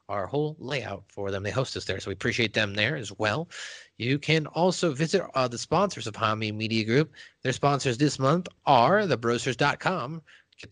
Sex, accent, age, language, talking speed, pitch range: male, American, 30-49, English, 190 wpm, 105-145 Hz